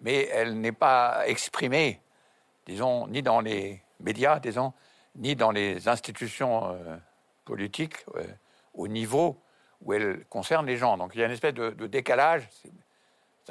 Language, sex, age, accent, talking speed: French, male, 60-79, French, 160 wpm